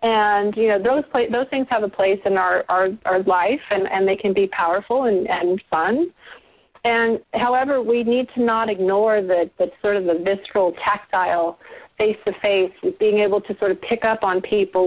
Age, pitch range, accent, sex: 30-49, 185-230 Hz, American, female